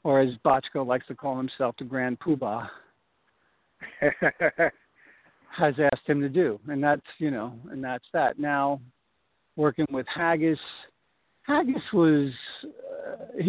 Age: 50-69